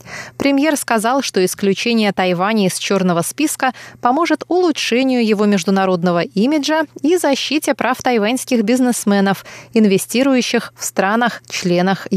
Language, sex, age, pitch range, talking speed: Russian, female, 20-39, 185-255 Hz, 105 wpm